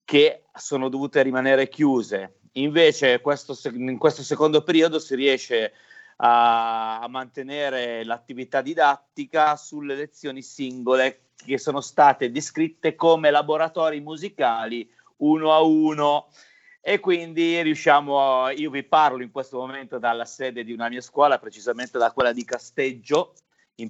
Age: 30-49